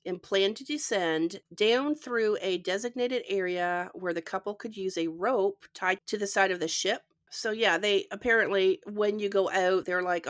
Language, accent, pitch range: English, American, 175-210 Hz